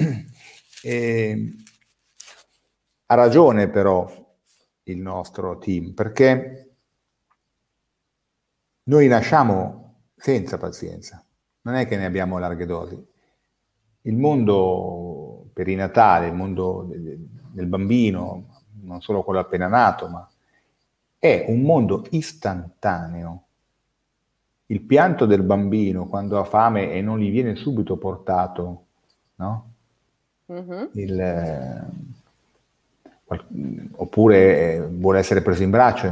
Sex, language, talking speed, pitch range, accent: male, Italian, 105 wpm, 95-120 Hz, native